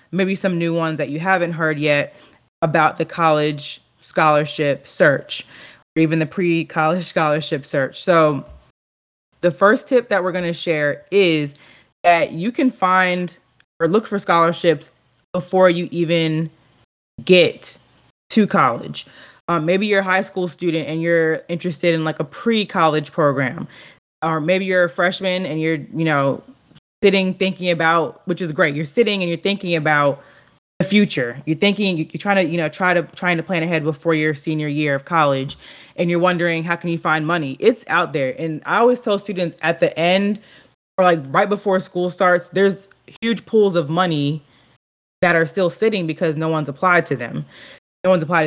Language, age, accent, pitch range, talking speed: English, 20-39, American, 155-185 Hz, 180 wpm